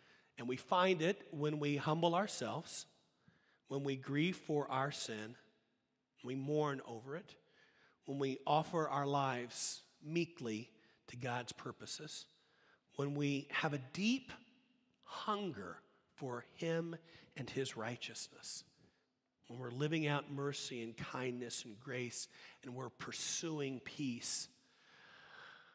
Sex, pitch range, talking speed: male, 120-155 Hz, 120 wpm